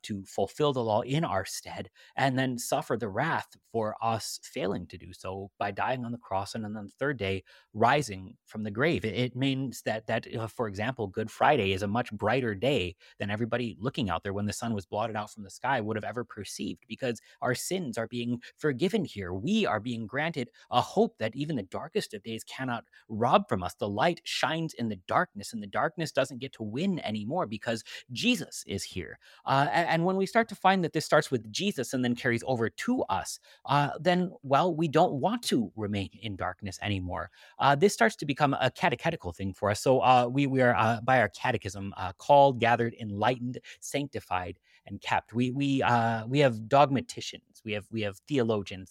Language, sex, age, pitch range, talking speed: English, male, 30-49, 105-140 Hz, 210 wpm